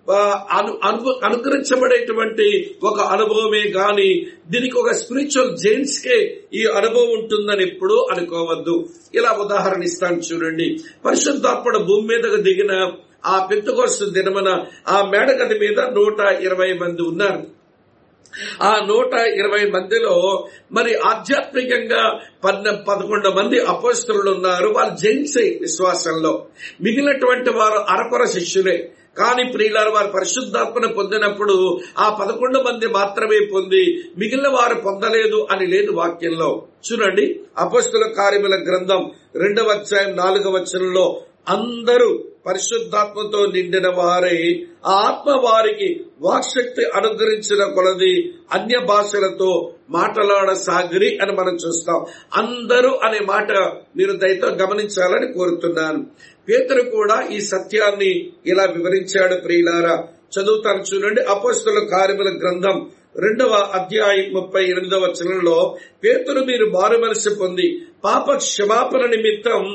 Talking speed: 65 wpm